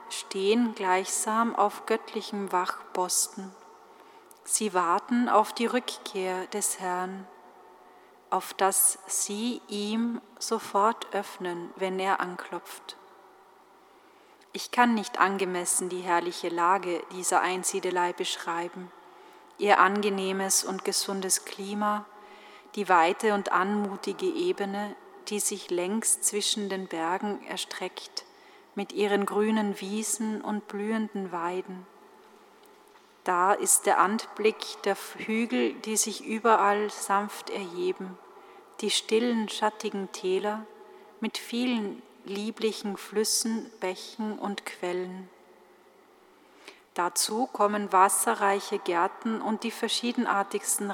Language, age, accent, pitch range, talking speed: German, 30-49, German, 190-230 Hz, 100 wpm